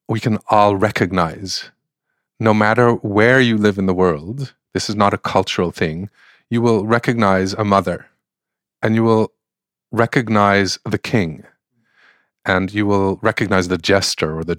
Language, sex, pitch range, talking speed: English, male, 95-120 Hz, 150 wpm